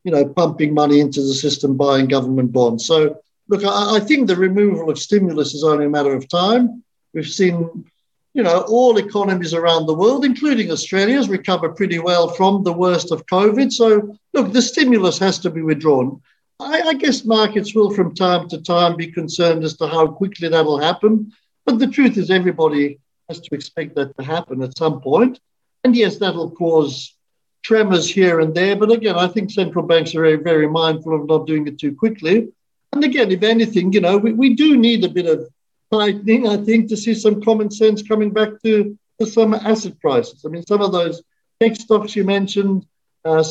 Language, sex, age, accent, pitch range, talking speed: English, male, 60-79, British, 160-215 Hz, 200 wpm